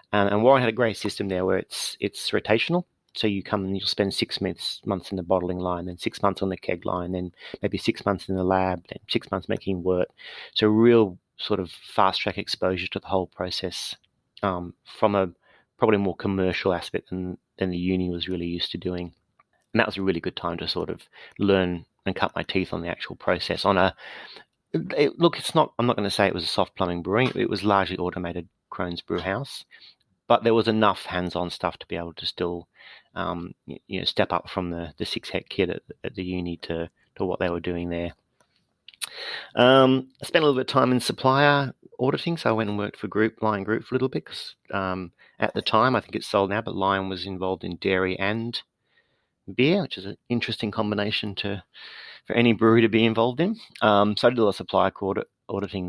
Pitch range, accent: 90-110 Hz, Australian